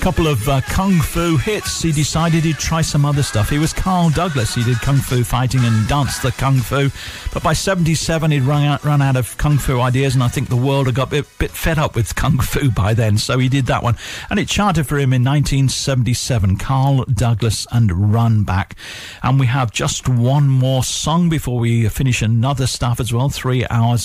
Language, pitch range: English, 115-145 Hz